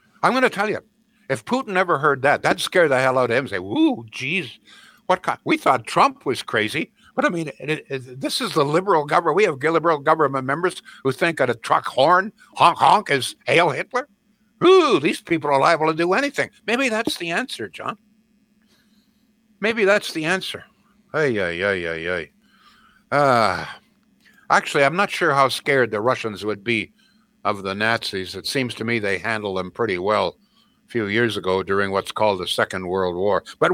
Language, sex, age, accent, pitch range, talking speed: English, male, 60-79, American, 140-220 Hz, 200 wpm